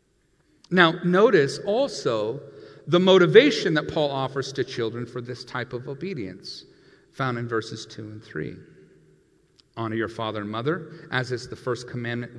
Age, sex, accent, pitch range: 40-59, male, American, 120-160 Hz